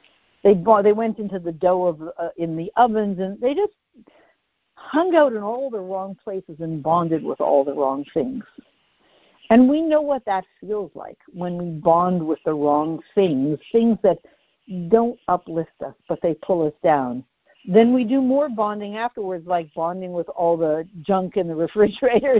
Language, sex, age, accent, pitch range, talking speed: English, female, 60-79, American, 165-235 Hz, 180 wpm